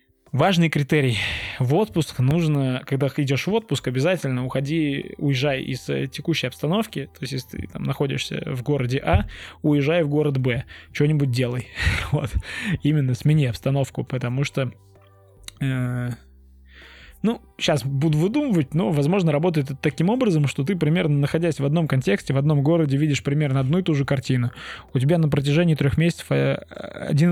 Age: 20-39